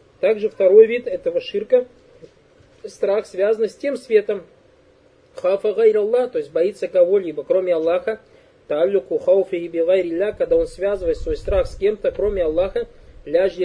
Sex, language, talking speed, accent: male, Russian, 135 wpm, native